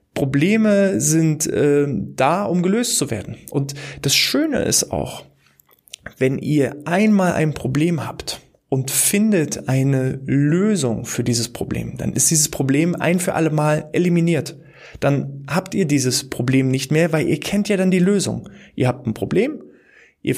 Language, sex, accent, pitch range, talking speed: German, male, German, 135-170 Hz, 160 wpm